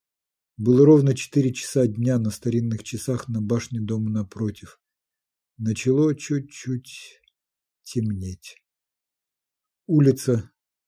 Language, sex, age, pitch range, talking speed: Ukrainian, male, 50-69, 110-135 Hz, 90 wpm